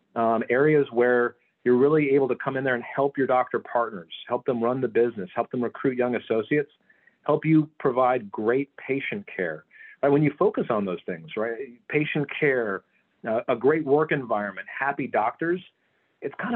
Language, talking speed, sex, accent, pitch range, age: English, 180 wpm, male, American, 125-150 Hz, 40-59